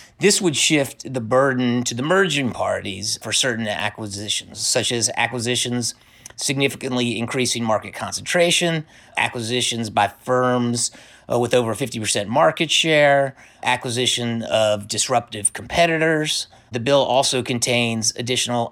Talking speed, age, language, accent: 120 wpm, 30-49, English, American